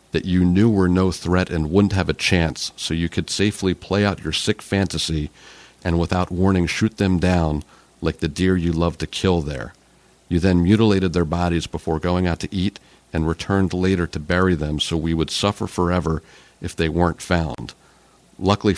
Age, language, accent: 50-69, English, American